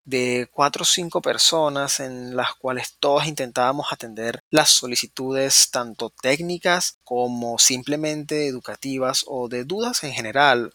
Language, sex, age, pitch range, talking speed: Spanish, male, 20-39, 125-155 Hz, 130 wpm